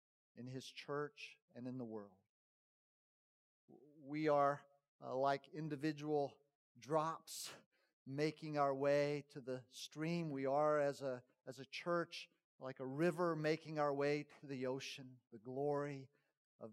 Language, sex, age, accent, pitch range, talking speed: English, male, 50-69, American, 130-155 Hz, 135 wpm